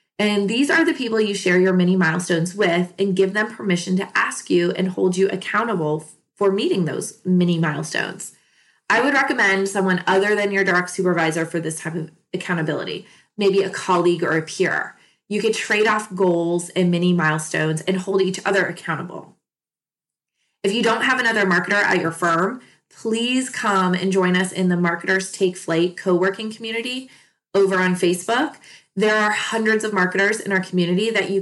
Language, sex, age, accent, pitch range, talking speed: English, female, 20-39, American, 175-205 Hz, 180 wpm